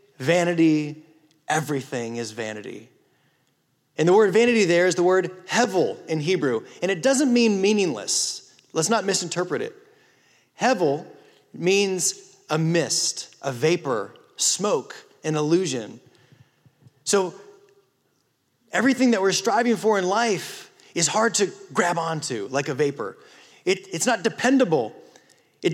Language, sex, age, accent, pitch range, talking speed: English, male, 30-49, American, 155-230 Hz, 125 wpm